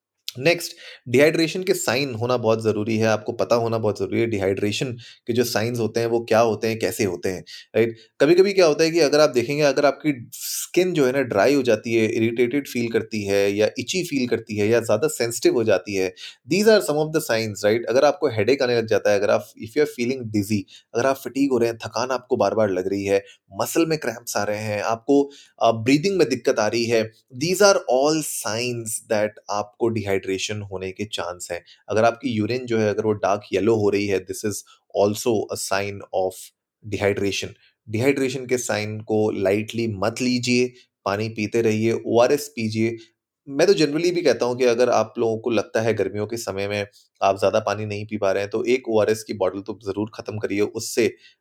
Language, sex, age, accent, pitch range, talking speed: Hindi, male, 30-49, native, 105-130 Hz, 210 wpm